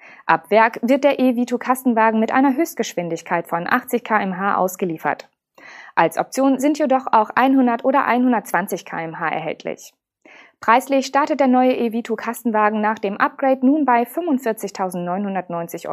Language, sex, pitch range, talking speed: German, female, 190-265 Hz, 130 wpm